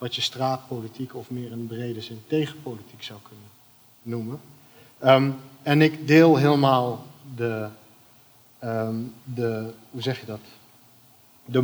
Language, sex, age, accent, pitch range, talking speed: Dutch, male, 40-59, Dutch, 115-140 Hz, 95 wpm